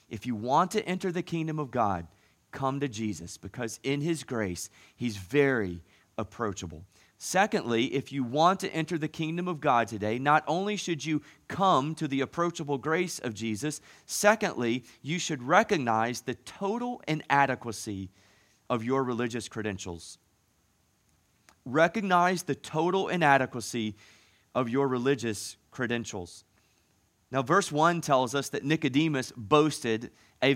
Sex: male